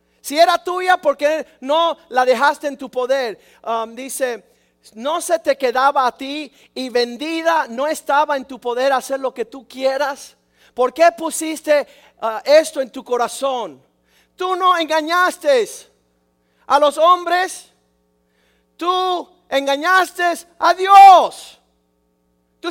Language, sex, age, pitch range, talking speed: Spanish, male, 40-59, 195-275 Hz, 130 wpm